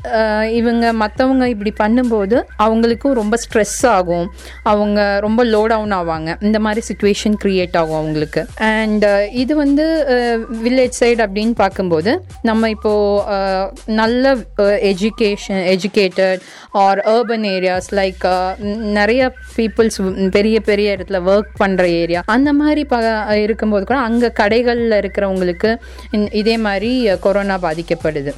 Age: 20-39